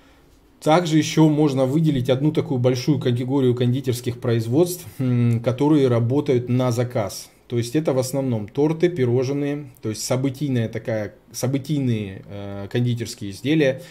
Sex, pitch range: male, 120-140 Hz